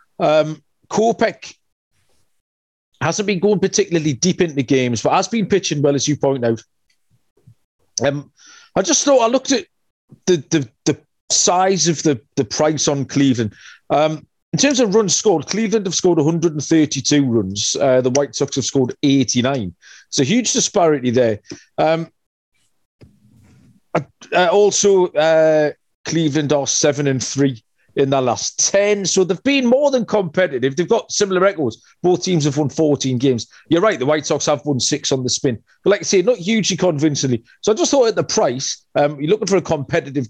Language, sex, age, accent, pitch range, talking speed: English, male, 30-49, British, 125-180 Hz, 175 wpm